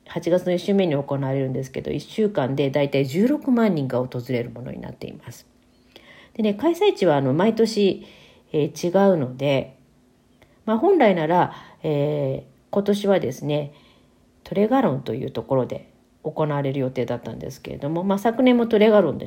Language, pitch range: Japanese, 130-195 Hz